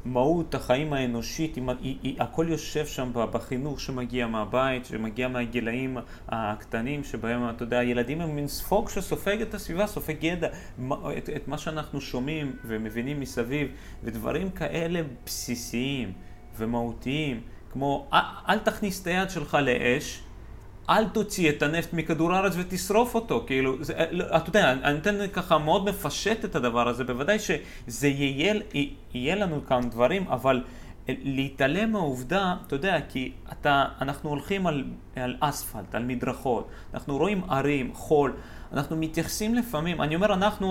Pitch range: 125-180 Hz